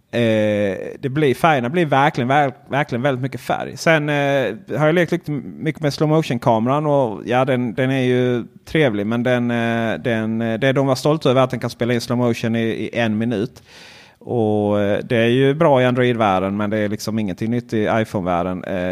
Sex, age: male, 30-49